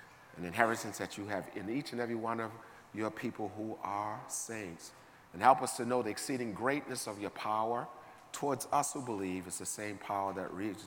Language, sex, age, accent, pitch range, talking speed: English, male, 40-59, American, 95-110 Hz, 205 wpm